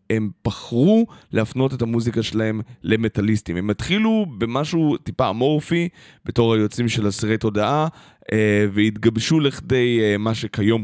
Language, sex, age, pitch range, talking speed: Hebrew, male, 20-39, 105-135 Hz, 125 wpm